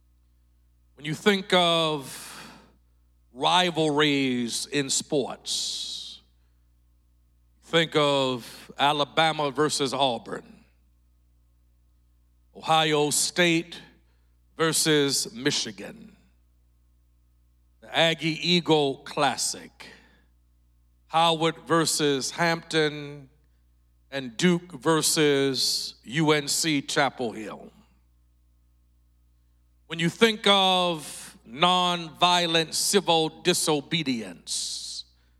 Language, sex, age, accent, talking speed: English, male, 50-69, American, 60 wpm